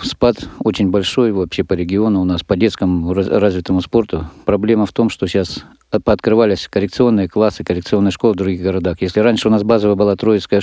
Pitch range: 90-105 Hz